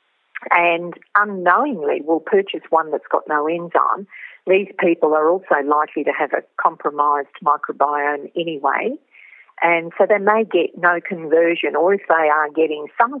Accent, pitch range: Australian, 160-200 Hz